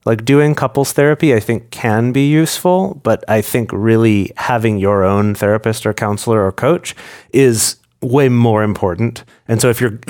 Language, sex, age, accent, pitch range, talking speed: English, male, 30-49, American, 105-130 Hz, 170 wpm